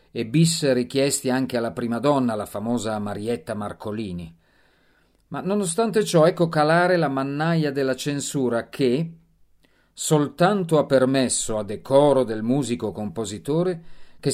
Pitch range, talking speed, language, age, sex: 105-150 Hz, 120 wpm, Italian, 40-59, male